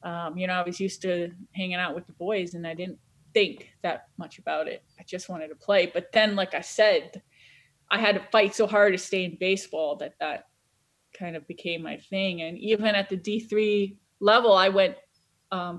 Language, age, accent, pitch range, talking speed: English, 20-39, American, 185-225 Hz, 215 wpm